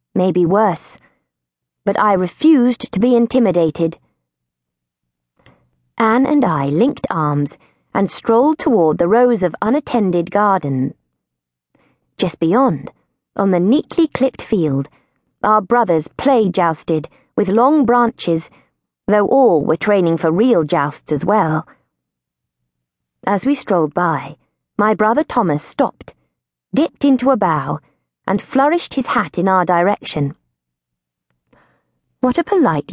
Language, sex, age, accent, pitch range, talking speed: English, female, 30-49, British, 145-235 Hz, 120 wpm